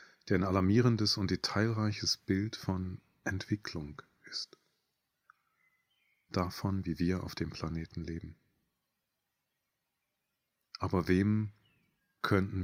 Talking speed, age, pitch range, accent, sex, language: 90 wpm, 30-49, 90-110 Hz, German, male, German